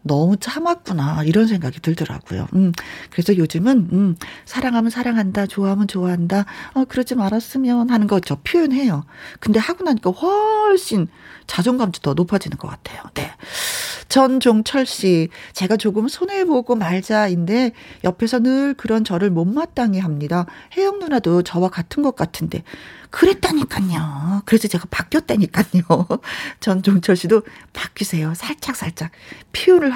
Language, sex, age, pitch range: Korean, female, 40-59, 175-250 Hz